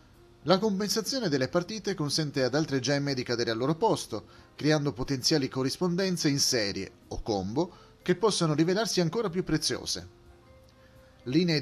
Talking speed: 140 wpm